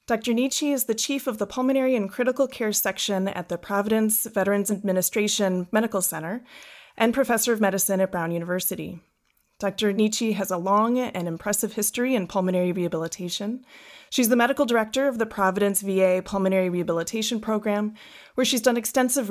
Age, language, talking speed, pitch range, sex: 30-49, English, 160 wpm, 180-230 Hz, female